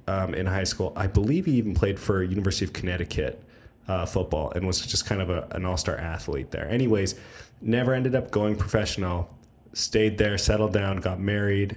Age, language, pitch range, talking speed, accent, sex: 20-39, English, 90-110 Hz, 185 wpm, American, male